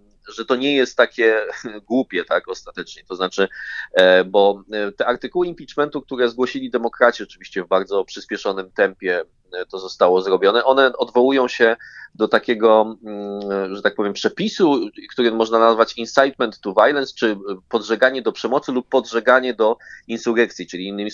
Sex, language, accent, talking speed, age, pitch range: male, Polish, native, 140 wpm, 20-39, 100-125 Hz